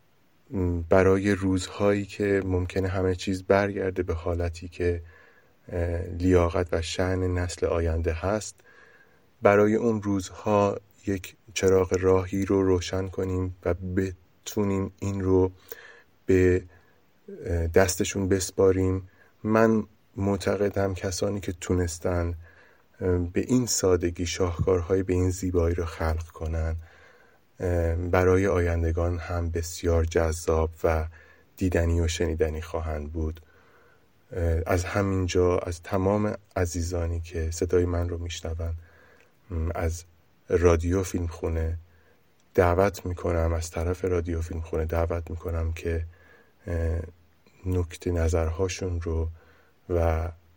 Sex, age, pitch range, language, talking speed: male, 20-39, 85-95 Hz, English, 105 wpm